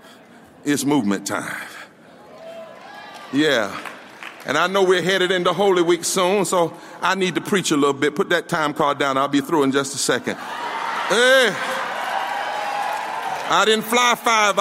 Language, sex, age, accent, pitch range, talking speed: English, male, 50-69, American, 175-230 Hz, 150 wpm